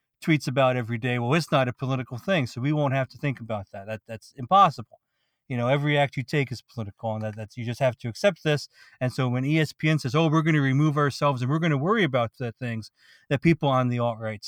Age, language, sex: 40-59, English, male